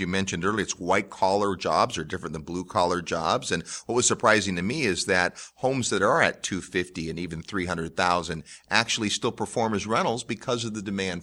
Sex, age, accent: male, 40-59, American